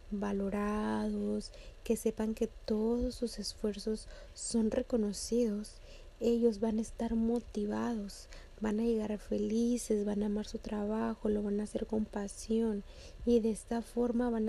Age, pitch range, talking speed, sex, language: 30-49, 210-230 Hz, 140 wpm, female, Spanish